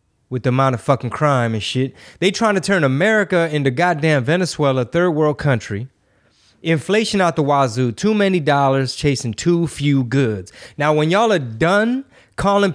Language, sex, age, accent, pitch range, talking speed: English, male, 20-39, American, 125-170 Hz, 170 wpm